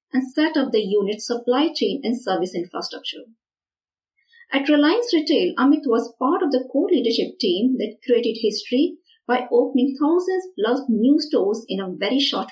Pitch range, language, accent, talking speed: 230-300 Hz, English, Indian, 165 wpm